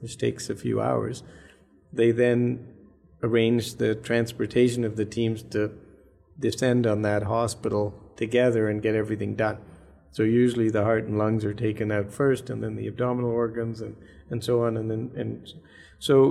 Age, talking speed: 50-69, 170 wpm